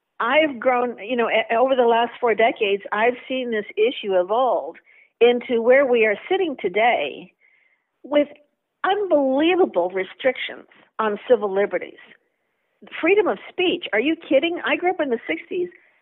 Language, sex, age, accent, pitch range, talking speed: English, female, 50-69, American, 215-315 Hz, 140 wpm